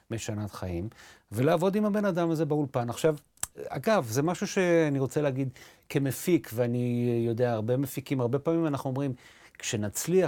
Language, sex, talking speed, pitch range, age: Hebrew, male, 145 wpm, 115-165 Hz, 30-49